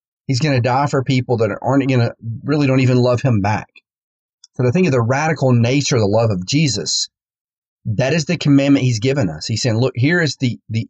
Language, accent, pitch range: English, American, 110-140 Hz